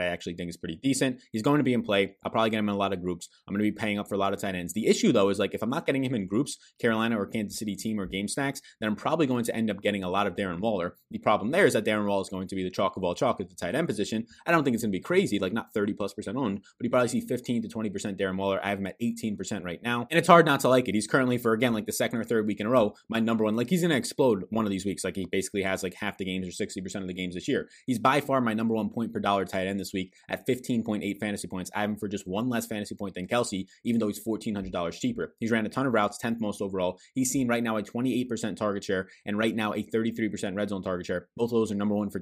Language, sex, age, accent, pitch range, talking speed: English, male, 20-39, American, 100-115 Hz, 330 wpm